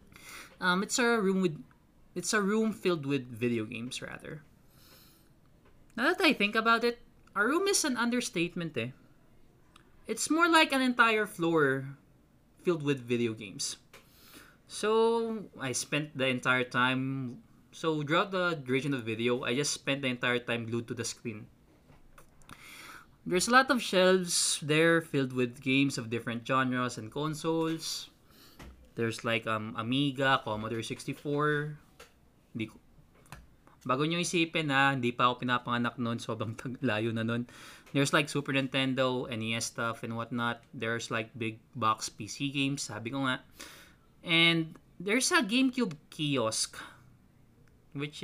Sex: male